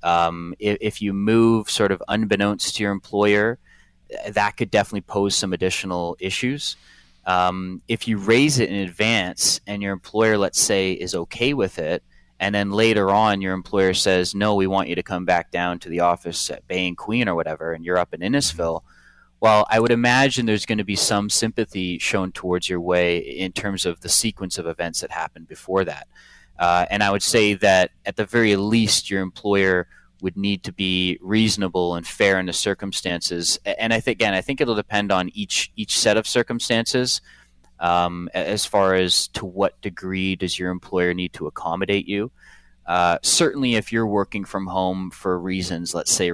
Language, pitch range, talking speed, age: English, 90-105 Hz, 195 wpm, 30-49